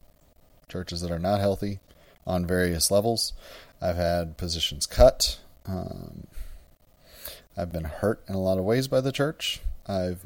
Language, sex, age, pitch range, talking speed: English, male, 30-49, 85-105 Hz, 145 wpm